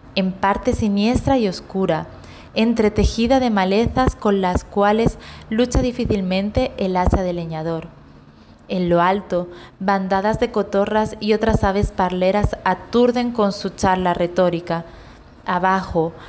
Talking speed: 120 wpm